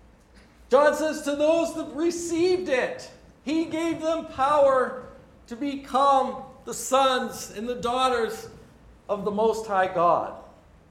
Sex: male